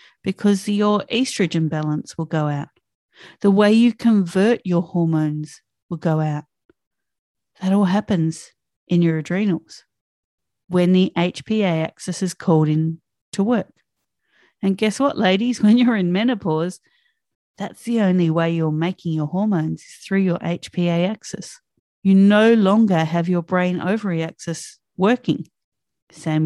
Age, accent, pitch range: 40-59, Australian, 165-205 Hz